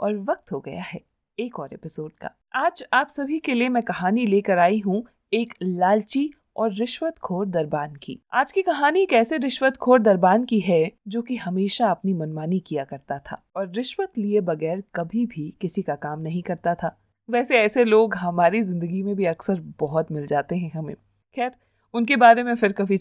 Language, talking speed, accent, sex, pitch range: Hindi, 190 wpm, native, female, 180-245 Hz